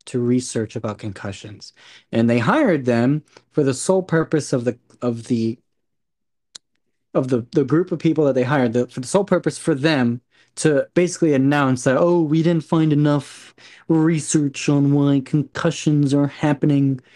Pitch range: 125-155 Hz